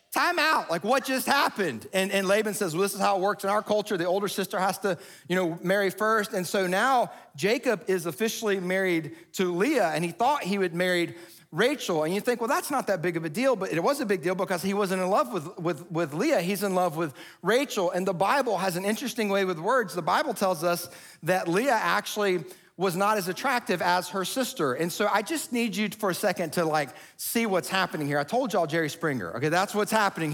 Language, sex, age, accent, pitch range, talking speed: English, male, 40-59, American, 170-210 Hz, 240 wpm